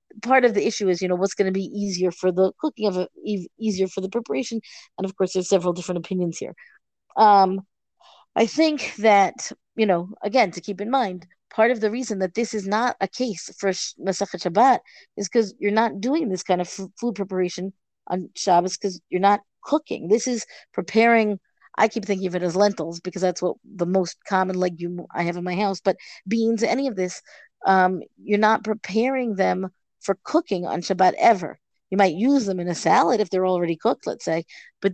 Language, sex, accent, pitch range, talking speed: English, female, American, 185-230 Hz, 205 wpm